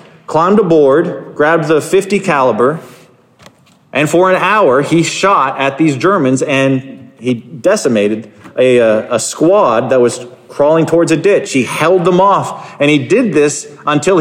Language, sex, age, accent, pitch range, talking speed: English, male, 40-59, American, 135-185 Hz, 150 wpm